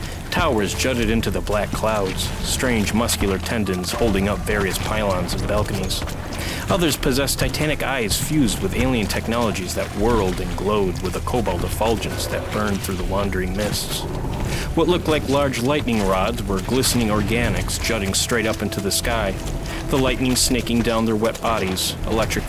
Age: 30-49